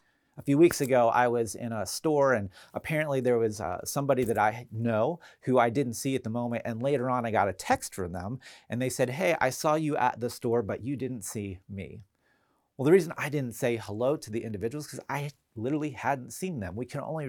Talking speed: 235 wpm